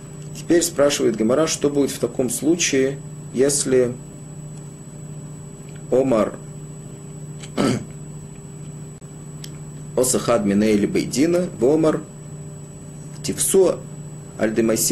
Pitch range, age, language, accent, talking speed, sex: 135-150 Hz, 40-59, Russian, native, 70 wpm, male